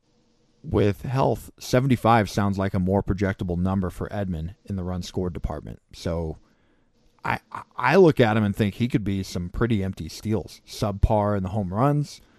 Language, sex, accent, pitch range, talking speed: English, male, American, 90-115 Hz, 175 wpm